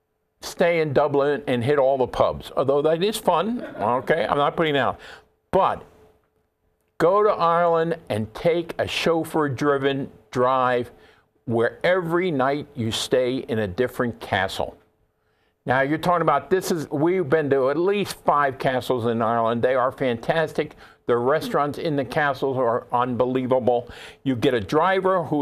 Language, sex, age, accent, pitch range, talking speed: English, male, 50-69, American, 125-160 Hz, 155 wpm